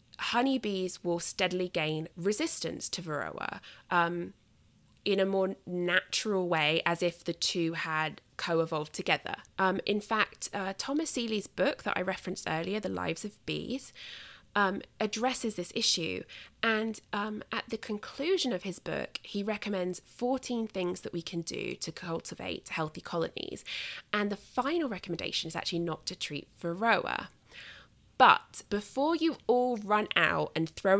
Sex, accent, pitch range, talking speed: female, British, 165-220 Hz, 150 wpm